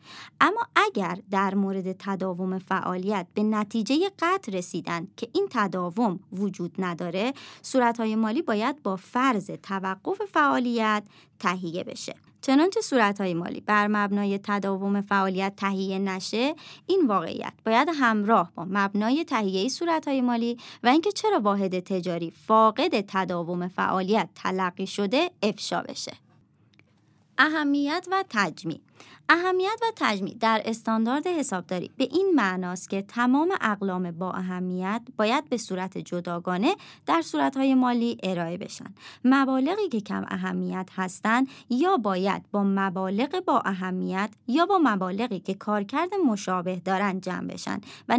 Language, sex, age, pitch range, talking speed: Persian, male, 30-49, 190-265 Hz, 125 wpm